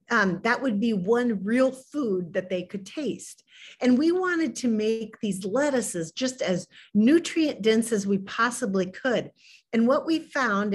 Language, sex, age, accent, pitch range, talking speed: English, female, 50-69, American, 195-260 Hz, 165 wpm